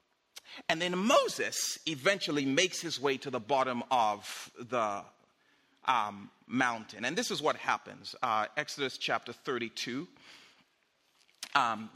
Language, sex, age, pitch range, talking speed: English, male, 40-59, 130-180 Hz, 120 wpm